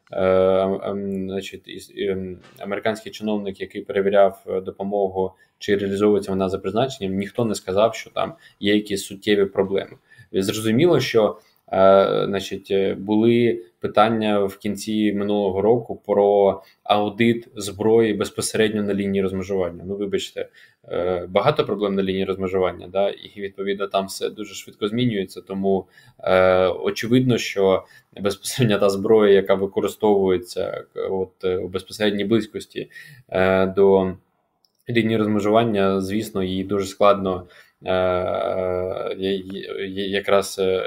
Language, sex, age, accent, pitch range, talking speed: Ukrainian, male, 20-39, native, 95-105 Hz, 110 wpm